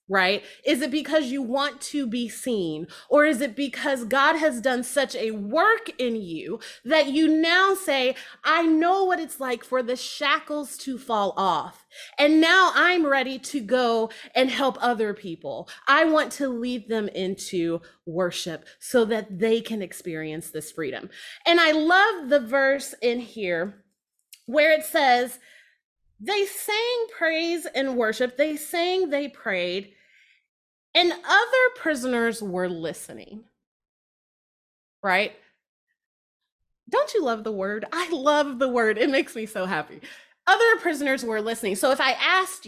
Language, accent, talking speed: English, American, 150 wpm